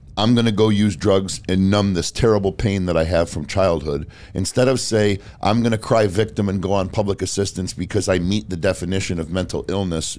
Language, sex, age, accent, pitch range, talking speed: English, male, 50-69, American, 85-105 Hz, 220 wpm